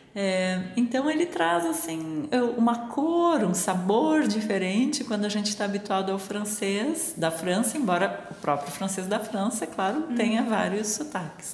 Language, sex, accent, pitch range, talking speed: Portuguese, female, Brazilian, 180-240 Hz, 145 wpm